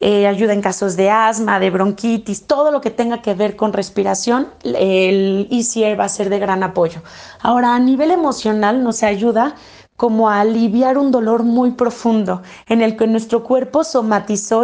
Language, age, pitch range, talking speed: Spanish, 30-49, 210-240 Hz, 175 wpm